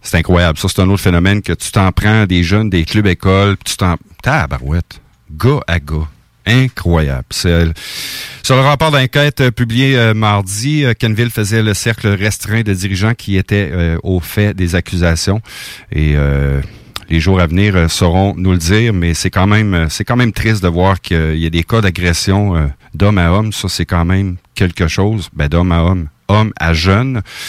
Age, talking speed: 50-69, 200 wpm